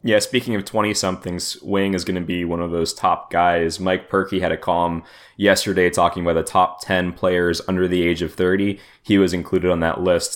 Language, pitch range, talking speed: English, 90-110 Hz, 215 wpm